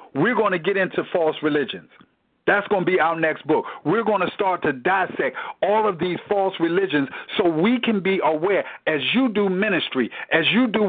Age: 50-69